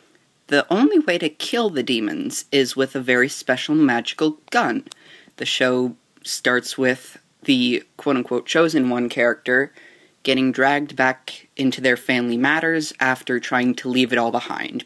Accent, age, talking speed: American, 30-49, 150 wpm